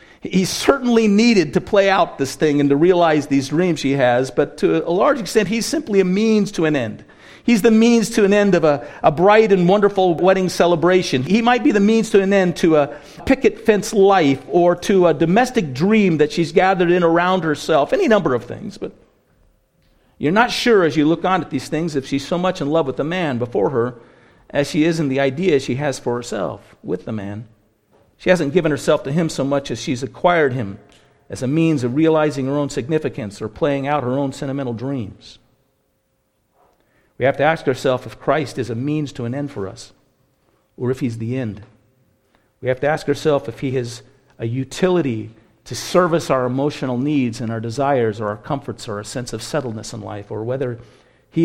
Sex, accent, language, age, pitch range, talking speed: male, American, English, 50-69, 125-175 Hz, 210 wpm